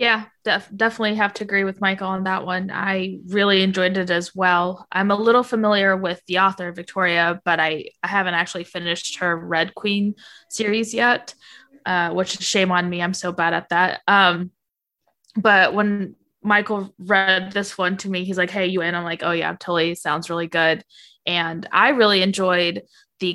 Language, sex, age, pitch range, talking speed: English, female, 20-39, 175-200 Hz, 195 wpm